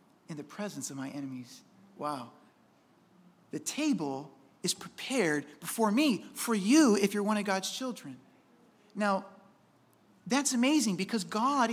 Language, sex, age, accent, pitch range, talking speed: English, male, 40-59, American, 190-260 Hz, 135 wpm